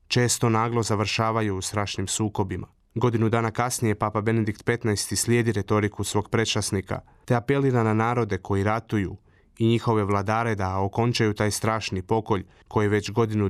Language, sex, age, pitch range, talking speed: Croatian, male, 30-49, 105-120 Hz, 145 wpm